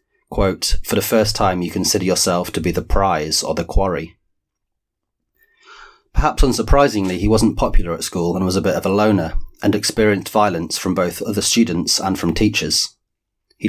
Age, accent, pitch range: 30-49, British, 85-105 Hz